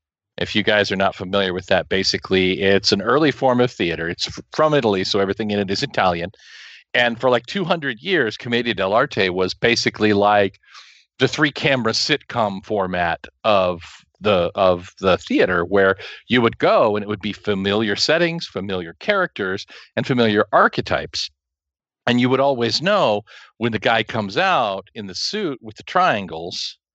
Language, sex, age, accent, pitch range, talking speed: English, male, 40-59, American, 100-130 Hz, 165 wpm